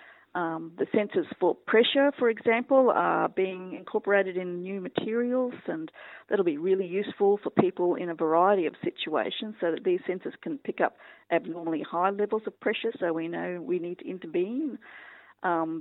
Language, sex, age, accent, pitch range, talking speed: English, female, 40-59, Australian, 180-255 Hz, 170 wpm